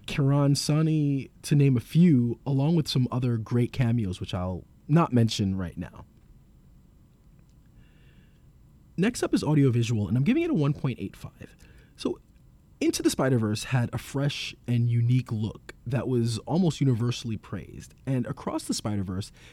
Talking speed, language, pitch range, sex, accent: 145 wpm, English, 105-145 Hz, male, American